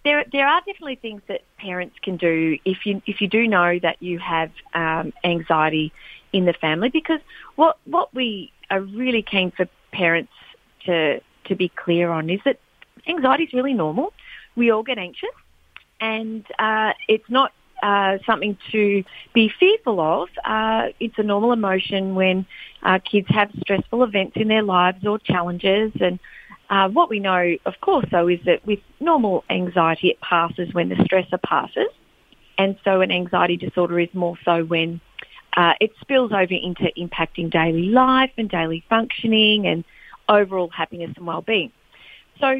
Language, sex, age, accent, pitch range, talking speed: English, female, 40-59, Australian, 180-230 Hz, 165 wpm